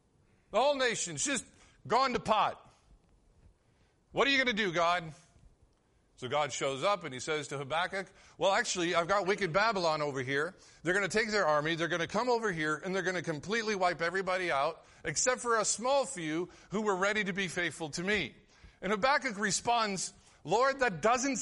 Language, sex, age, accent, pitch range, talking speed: English, male, 50-69, American, 135-195 Hz, 195 wpm